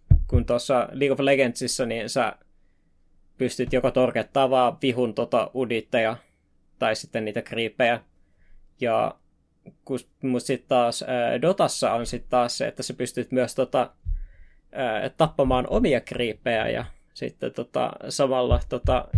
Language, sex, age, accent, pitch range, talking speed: Finnish, male, 20-39, native, 85-130 Hz, 130 wpm